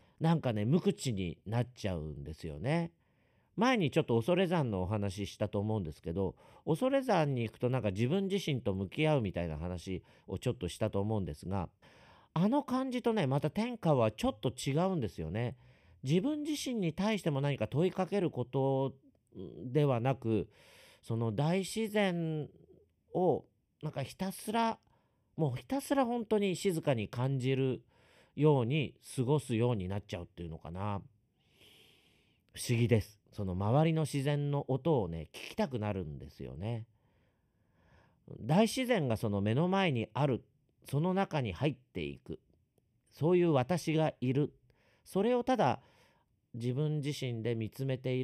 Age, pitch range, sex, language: 40-59, 105-160 Hz, male, Japanese